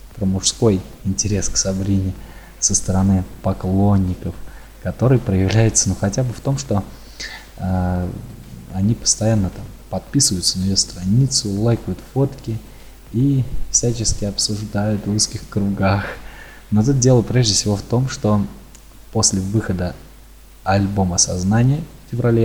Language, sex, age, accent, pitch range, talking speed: Russian, male, 20-39, native, 95-120 Hz, 125 wpm